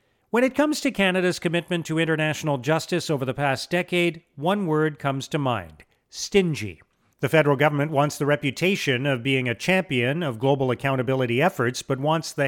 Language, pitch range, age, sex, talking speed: English, 130-170 Hz, 40-59, male, 175 wpm